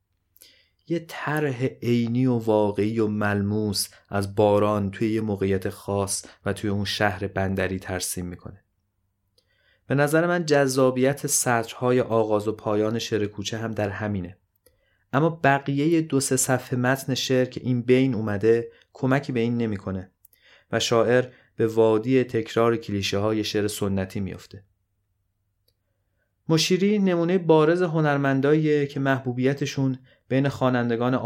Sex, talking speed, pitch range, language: male, 125 wpm, 100-135 Hz, Persian